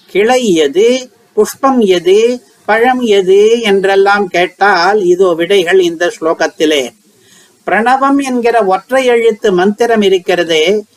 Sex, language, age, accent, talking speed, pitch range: male, Tamil, 50-69, native, 100 wpm, 180-225 Hz